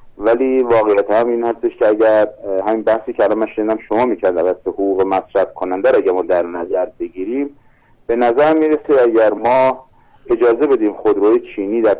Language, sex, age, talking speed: Persian, male, 50-69, 170 wpm